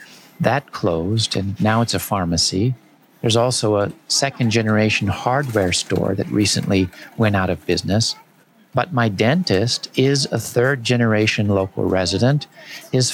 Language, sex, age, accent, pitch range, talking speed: English, male, 50-69, American, 95-125 Hz, 130 wpm